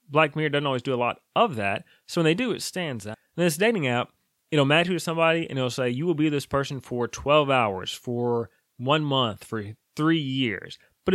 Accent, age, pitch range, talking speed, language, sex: American, 20-39, 130-175 Hz, 230 wpm, English, male